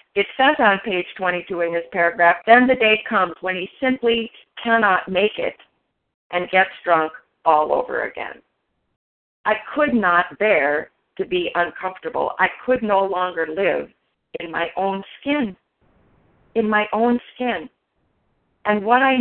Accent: American